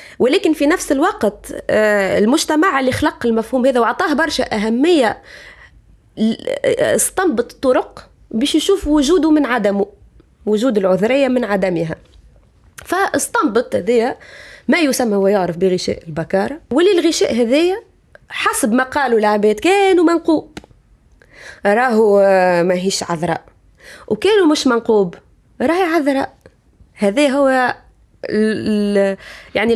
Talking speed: 95 wpm